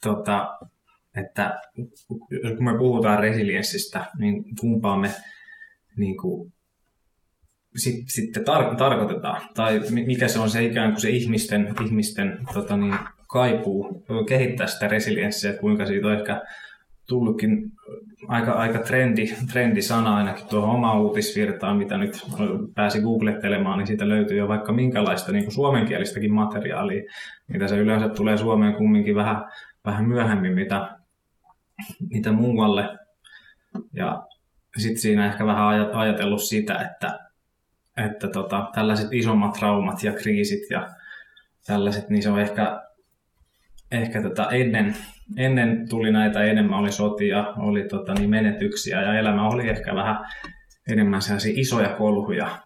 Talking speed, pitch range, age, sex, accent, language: 120 wpm, 105-125 Hz, 20-39, male, native, Finnish